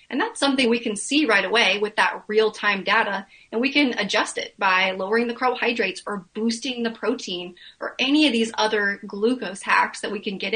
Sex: female